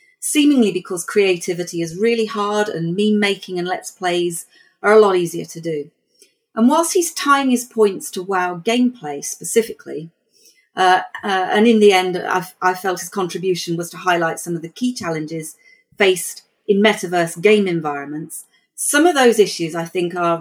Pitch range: 170-220 Hz